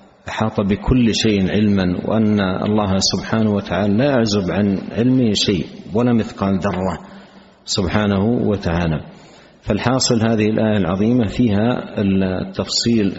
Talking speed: 110 wpm